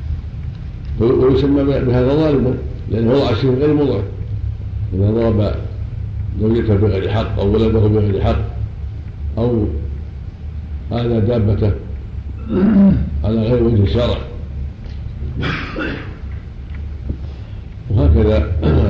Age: 60-79